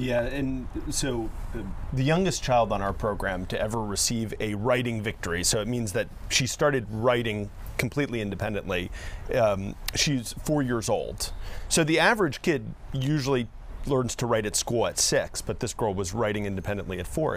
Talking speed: 170 wpm